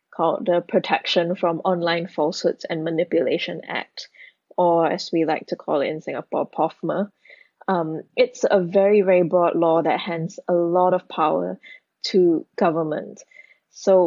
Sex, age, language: female, 20-39, English